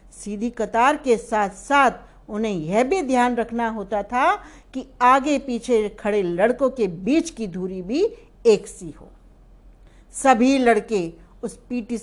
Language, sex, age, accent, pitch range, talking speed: Hindi, female, 60-79, native, 195-280 Hz, 150 wpm